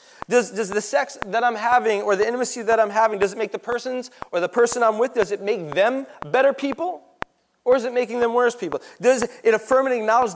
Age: 30-49